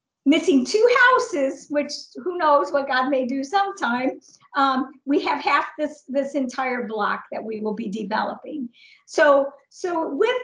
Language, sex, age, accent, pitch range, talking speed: English, female, 50-69, American, 240-290 Hz, 155 wpm